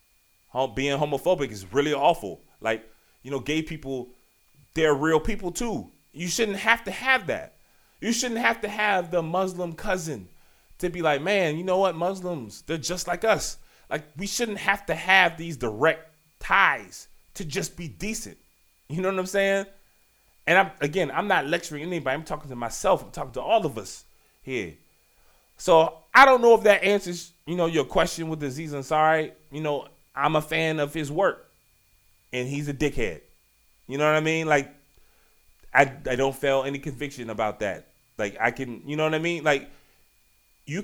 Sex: male